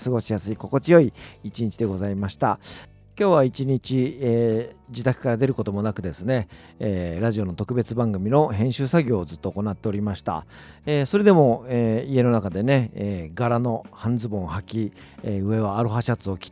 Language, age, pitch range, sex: Japanese, 50-69, 100-125 Hz, male